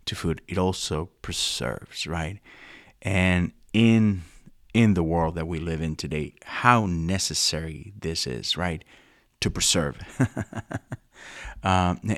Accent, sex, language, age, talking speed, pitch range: American, male, English, 30-49, 120 wpm, 90-110 Hz